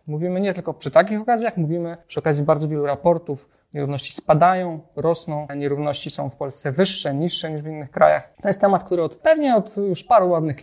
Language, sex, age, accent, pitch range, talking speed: Polish, male, 30-49, native, 145-190 Hz, 200 wpm